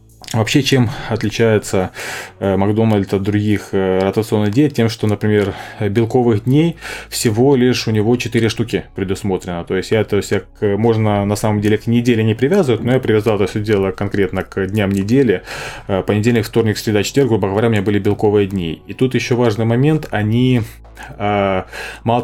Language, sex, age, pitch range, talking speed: Russian, male, 20-39, 100-125 Hz, 160 wpm